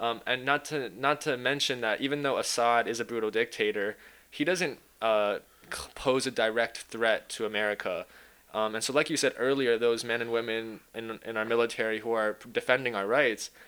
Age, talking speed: 20-39, 195 wpm